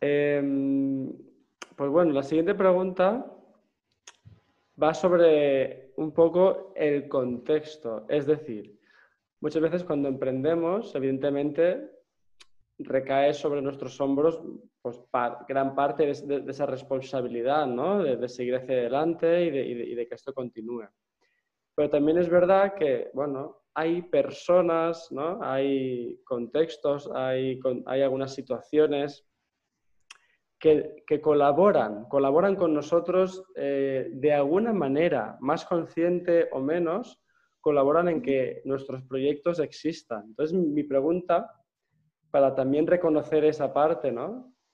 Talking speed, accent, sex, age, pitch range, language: 110 wpm, Spanish, male, 20-39, 130-165 Hz, Spanish